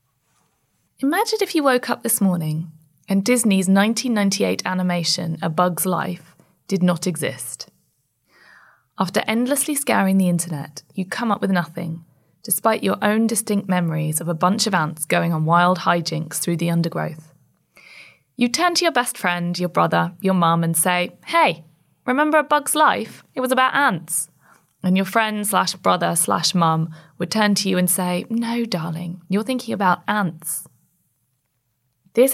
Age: 20-39